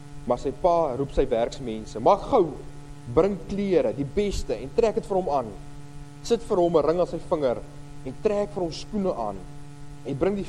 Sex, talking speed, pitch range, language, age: male, 200 wpm, 145-175 Hz, English, 30-49